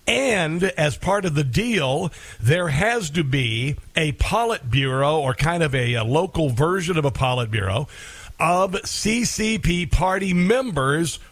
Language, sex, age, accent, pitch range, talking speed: English, male, 50-69, American, 135-180 Hz, 140 wpm